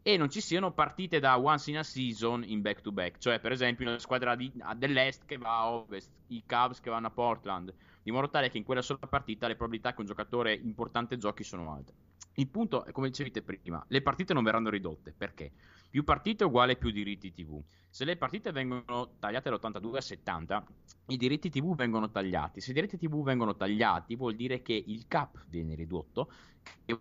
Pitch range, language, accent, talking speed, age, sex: 105-145 Hz, Italian, native, 215 wpm, 20-39, male